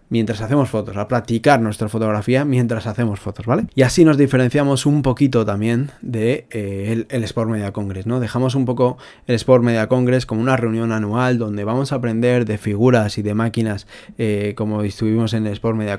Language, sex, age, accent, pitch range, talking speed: Spanish, male, 20-39, Spanish, 110-125 Hz, 200 wpm